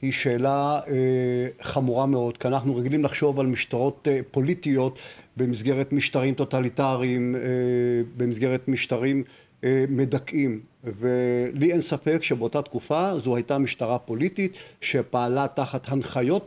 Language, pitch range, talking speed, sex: Hebrew, 130-165 Hz, 120 wpm, male